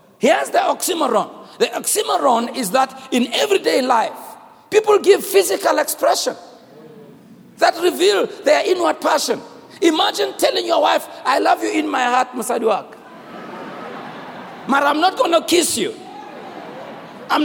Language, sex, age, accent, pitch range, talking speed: English, male, 50-69, South African, 290-360 Hz, 130 wpm